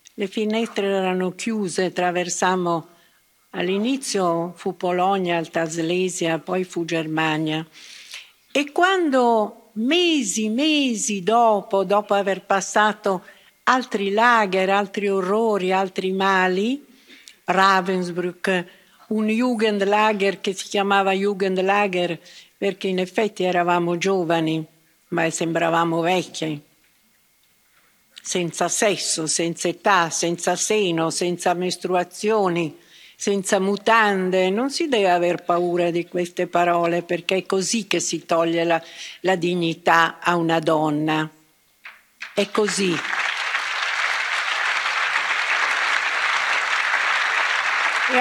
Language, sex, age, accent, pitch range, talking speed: Italian, female, 60-79, native, 170-210 Hz, 95 wpm